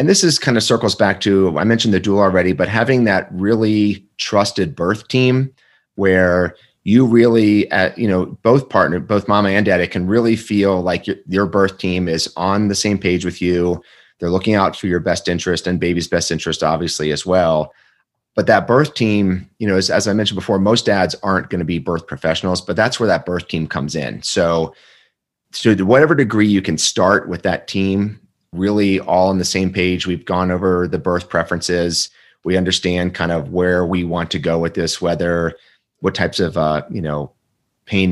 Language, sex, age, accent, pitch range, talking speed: English, male, 30-49, American, 85-100 Hz, 205 wpm